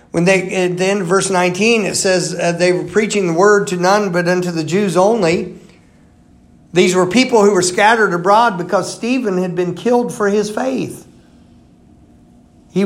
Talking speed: 180 wpm